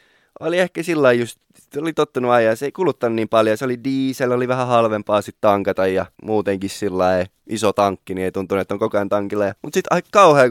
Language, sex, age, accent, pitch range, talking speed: Finnish, male, 20-39, native, 100-130 Hz, 210 wpm